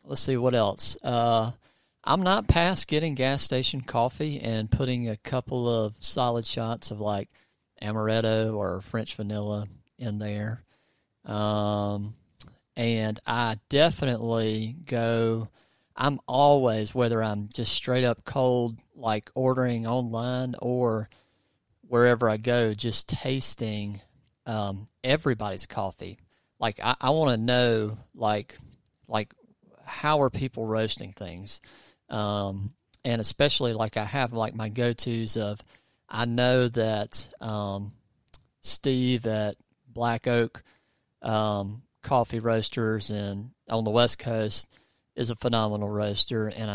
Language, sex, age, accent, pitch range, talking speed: English, male, 40-59, American, 105-125 Hz, 120 wpm